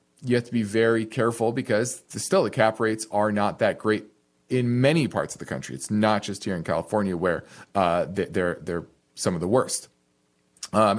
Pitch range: 105-125 Hz